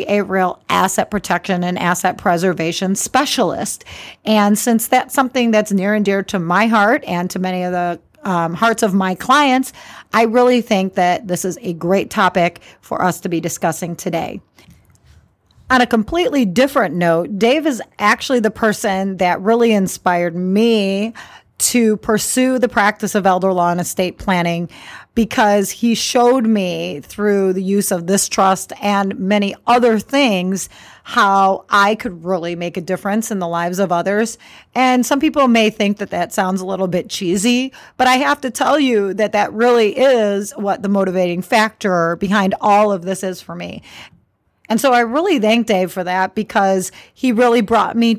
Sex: female